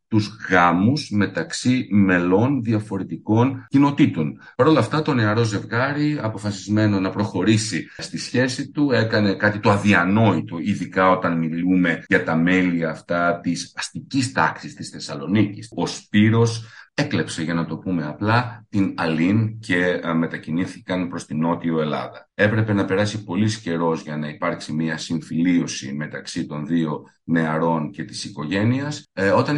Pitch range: 85-110 Hz